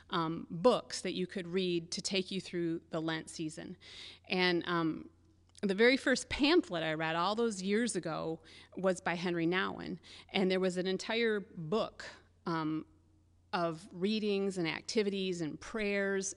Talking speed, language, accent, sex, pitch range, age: 155 wpm, English, American, female, 165-200 Hz, 30-49